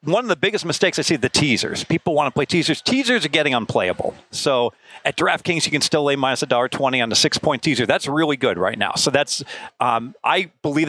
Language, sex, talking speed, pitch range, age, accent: English, male, 235 wpm, 135-170 Hz, 40-59, American